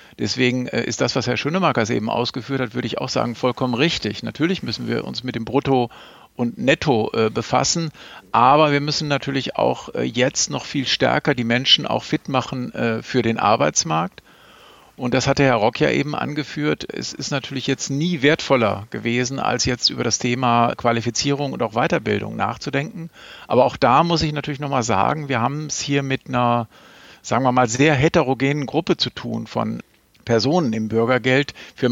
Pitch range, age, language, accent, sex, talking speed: 115-140 Hz, 50-69, German, German, male, 175 wpm